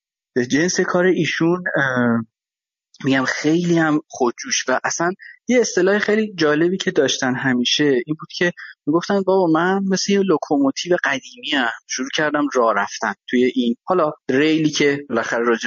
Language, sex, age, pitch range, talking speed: Persian, male, 30-49, 155-240 Hz, 140 wpm